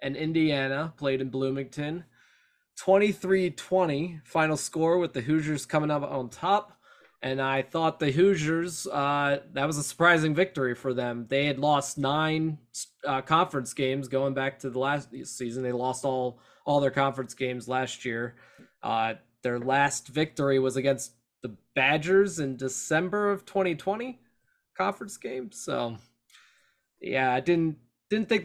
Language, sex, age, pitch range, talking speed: English, male, 20-39, 130-165 Hz, 150 wpm